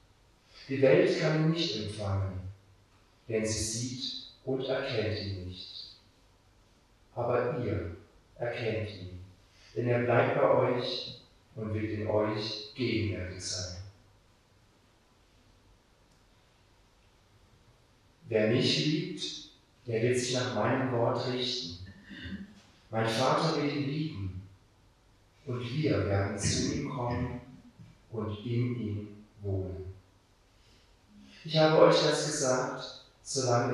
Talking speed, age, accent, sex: 105 wpm, 50-69, German, male